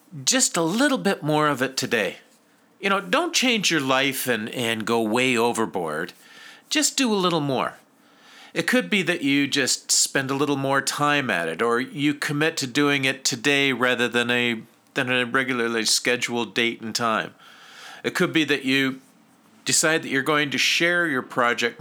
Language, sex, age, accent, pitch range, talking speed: English, male, 50-69, American, 125-170 Hz, 185 wpm